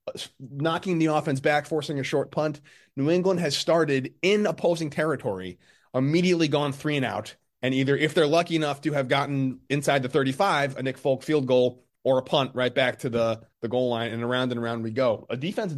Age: 30-49